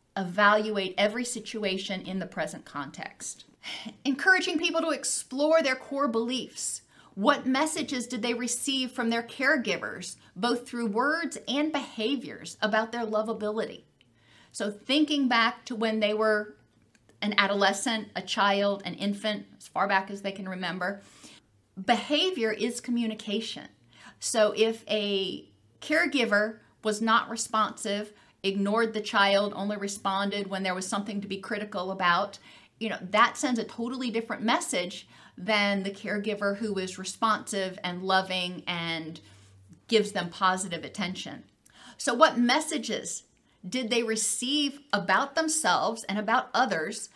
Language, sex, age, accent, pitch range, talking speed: English, female, 40-59, American, 200-240 Hz, 135 wpm